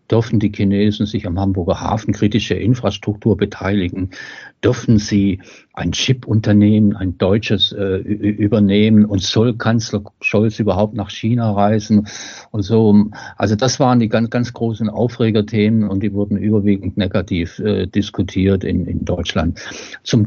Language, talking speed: German, 140 wpm